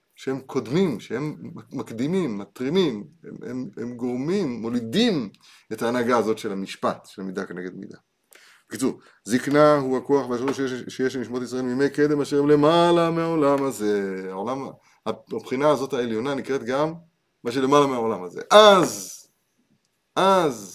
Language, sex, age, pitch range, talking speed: Hebrew, male, 30-49, 120-165 Hz, 135 wpm